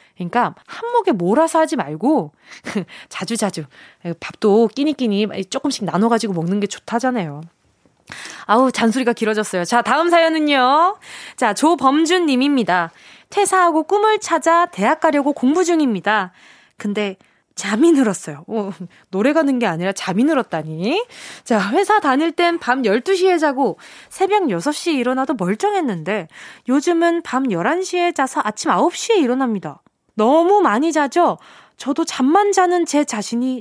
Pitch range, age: 225-335 Hz, 20-39